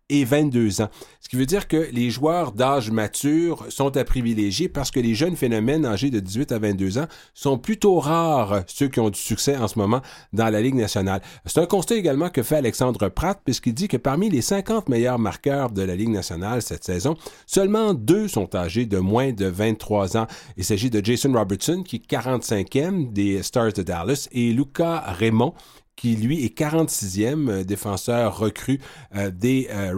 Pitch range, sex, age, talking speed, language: 105-145 Hz, male, 40-59, 190 wpm, French